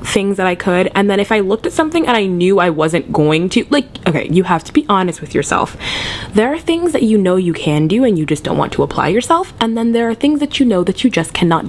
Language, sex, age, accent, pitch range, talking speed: English, female, 20-39, American, 160-230 Hz, 285 wpm